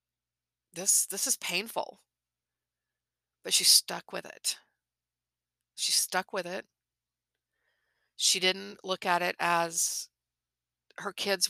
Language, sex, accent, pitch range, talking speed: English, female, American, 150-190 Hz, 110 wpm